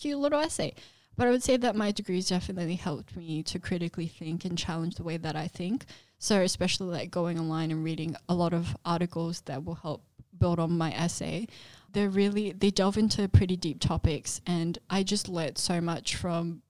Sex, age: female, 10-29